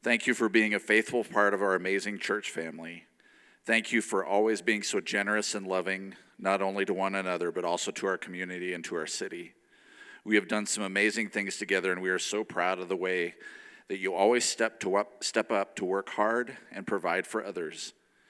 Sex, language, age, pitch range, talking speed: male, English, 40-59, 95-110 Hz, 215 wpm